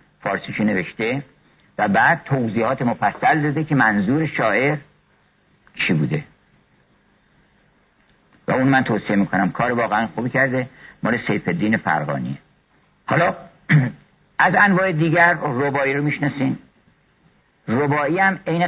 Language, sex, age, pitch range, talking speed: Persian, male, 60-79, 115-155 Hz, 110 wpm